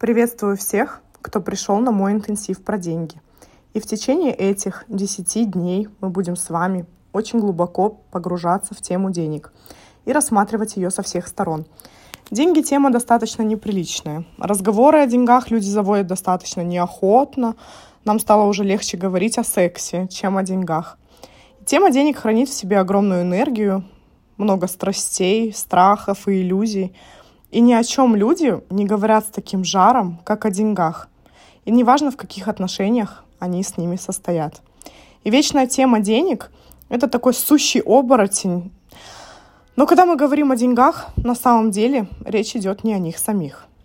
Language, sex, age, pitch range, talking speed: Russian, female, 20-39, 185-235 Hz, 150 wpm